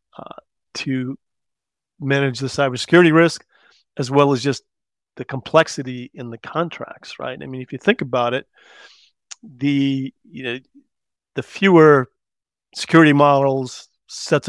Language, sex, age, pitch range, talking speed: English, male, 40-59, 125-145 Hz, 130 wpm